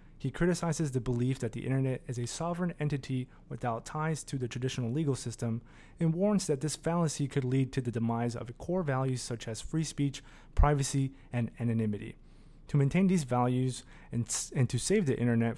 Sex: male